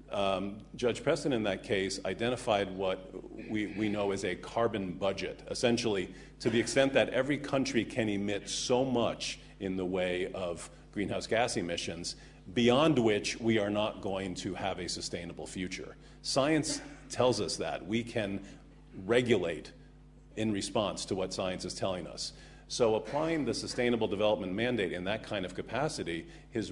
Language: English